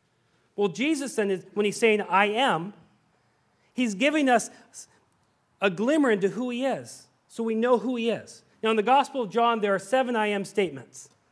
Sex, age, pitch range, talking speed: male, 40-59, 150-235 Hz, 180 wpm